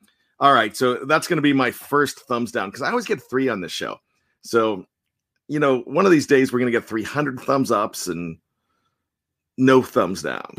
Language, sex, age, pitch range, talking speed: English, male, 40-59, 125-180 Hz, 210 wpm